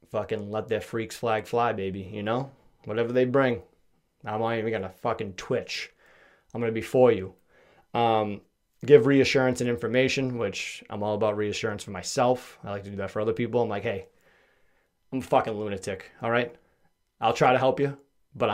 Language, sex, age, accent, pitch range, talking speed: English, male, 20-39, American, 110-135 Hz, 190 wpm